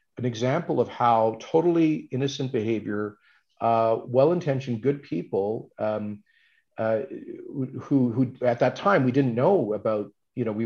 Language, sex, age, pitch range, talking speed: English, male, 40-59, 115-145 Hz, 130 wpm